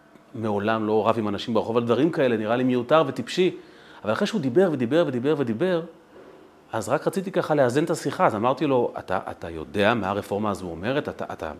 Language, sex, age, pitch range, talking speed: Hebrew, male, 40-59, 110-175 Hz, 200 wpm